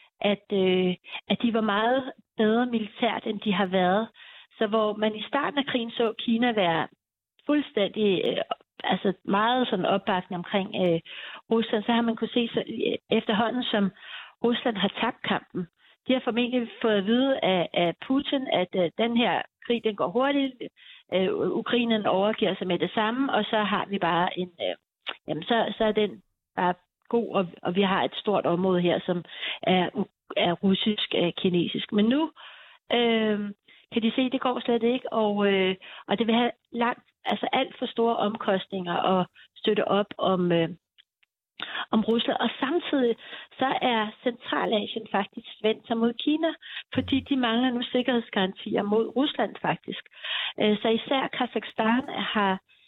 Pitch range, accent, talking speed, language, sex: 195-240 Hz, native, 165 wpm, Danish, female